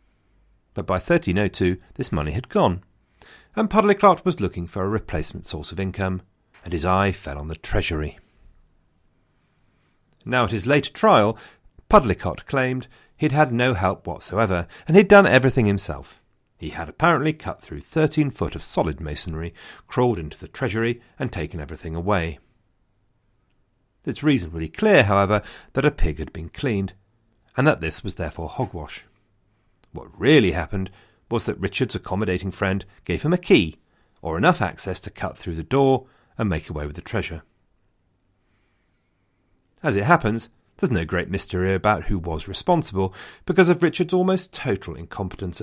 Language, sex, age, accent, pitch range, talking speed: English, male, 40-59, British, 90-120 Hz, 155 wpm